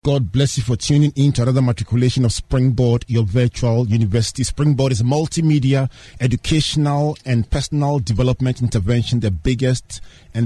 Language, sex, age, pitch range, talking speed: English, male, 40-59, 110-145 Hz, 150 wpm